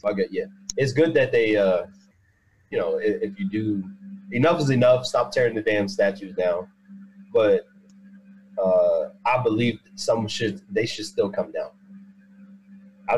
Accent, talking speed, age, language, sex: American, 150 wpm, 30-49, English, male